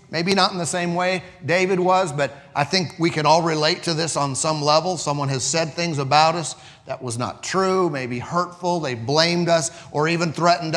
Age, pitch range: 40-59, 150-205 Hz